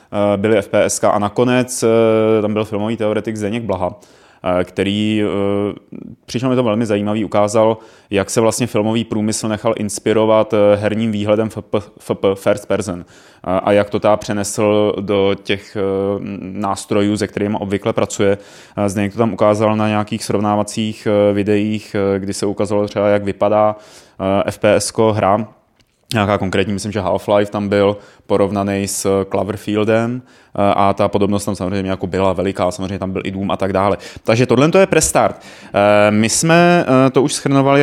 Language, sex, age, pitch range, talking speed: Czech, male, 20-39, 100-115 Hz, 140 wpm